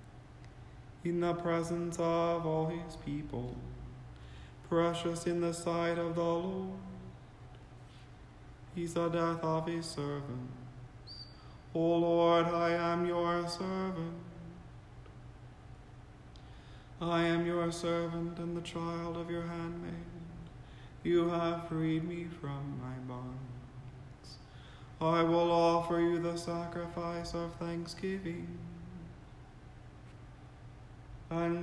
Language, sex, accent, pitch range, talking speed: English, male, American, 125-170 Hz, 100 wpm